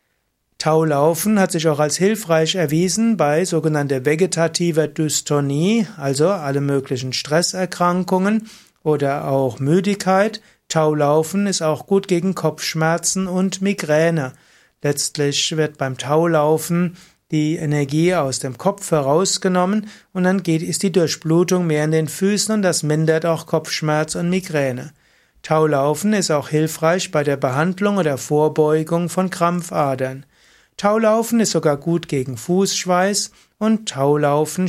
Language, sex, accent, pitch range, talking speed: German, male, German, 150-180 Hz, 125 wpm